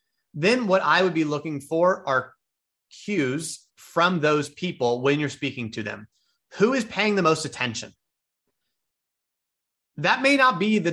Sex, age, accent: male, 30-49, American